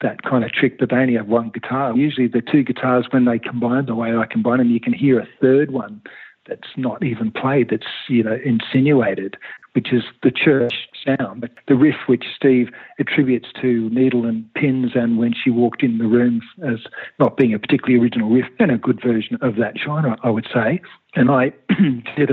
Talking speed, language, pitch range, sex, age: 210 wpm, English, 115-130 Hz, male, 50-69